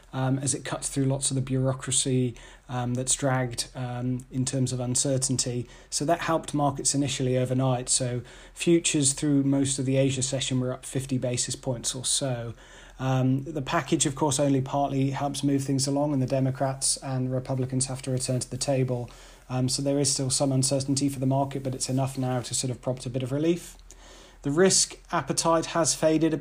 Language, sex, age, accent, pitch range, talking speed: English, male, 30-49, British, 130-140 Hz, 200 wpm